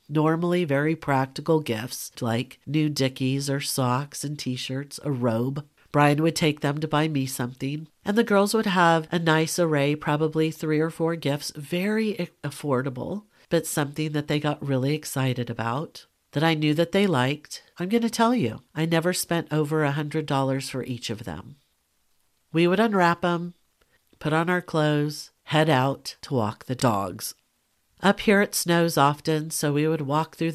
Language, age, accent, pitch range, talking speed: English, 50-69, American, 135-160 Hz, 175 wpm